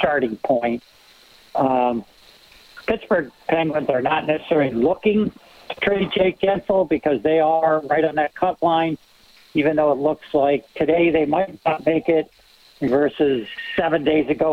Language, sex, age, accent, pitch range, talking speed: English, male, 60-79, American, 140-160 Hz, 150 wpm